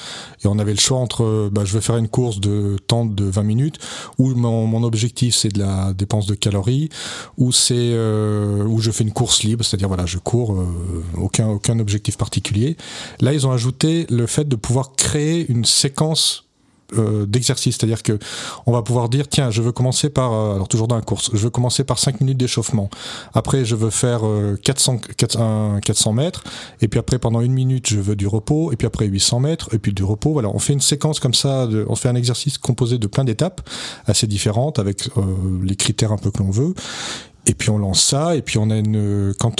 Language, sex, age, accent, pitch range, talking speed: French, male, 40-59, French, 105-130 Hz, 225 wpm